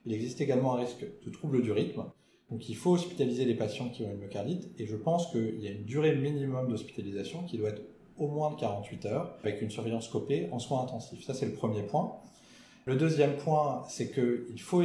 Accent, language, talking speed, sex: French, French, 220 wpm, male